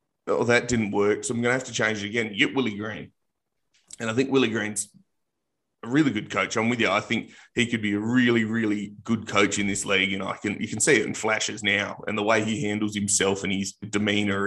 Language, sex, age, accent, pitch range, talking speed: English, male, 20-39, Australian, 100-115 Hz, 255 wpm